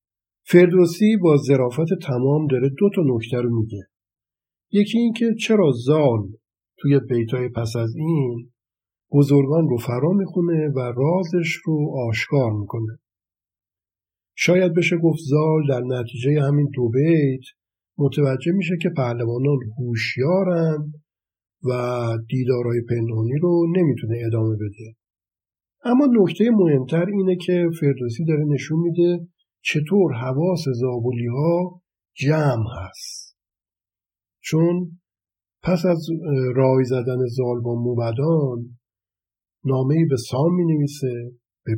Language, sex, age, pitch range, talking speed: Persian, male, 50-69, 115-160 Hz, 110 wpm